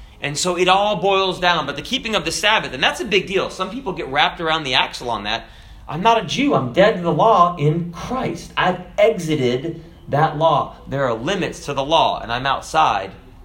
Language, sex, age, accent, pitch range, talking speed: English, male, 30-49, American, 140-185 Hz, 225 wpm